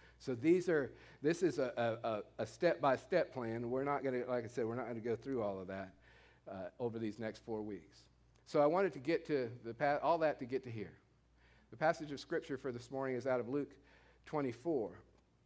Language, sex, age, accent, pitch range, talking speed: English, male, 50-69, American, 115-145 Hz, 225 wpm